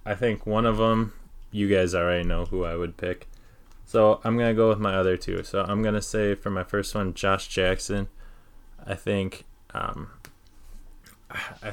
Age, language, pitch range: 20-39, English, 95-105 Hz